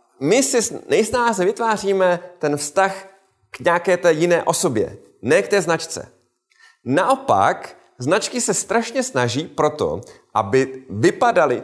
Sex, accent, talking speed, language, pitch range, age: male, native, 120 wpm, Czech, 105-145 Hz, 30-49